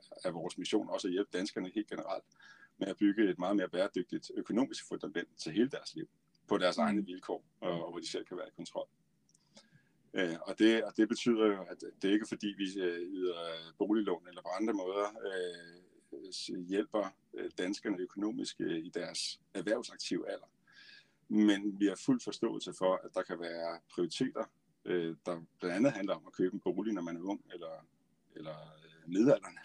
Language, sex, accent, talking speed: Danish, male, native, 185 wpm